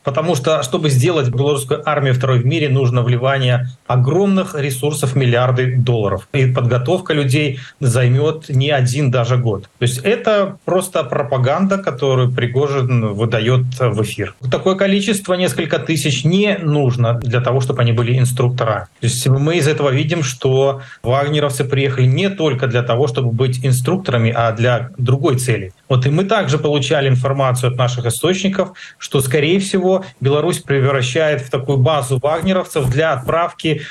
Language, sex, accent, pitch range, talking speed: Russian, male, native, 120-155 Hz, 150 wpm